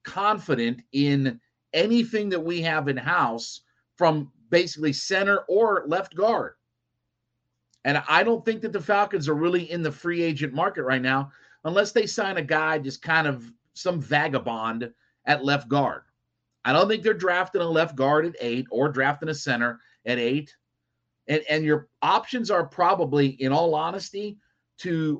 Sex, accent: male, American